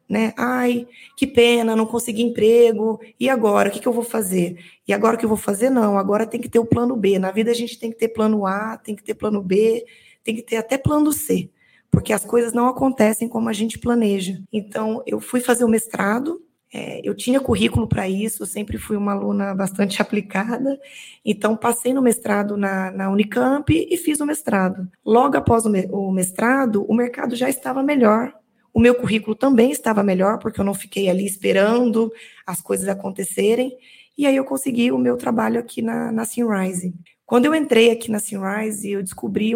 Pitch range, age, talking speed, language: 200-240 Hz, 20-39, 200 wpm, Portuguese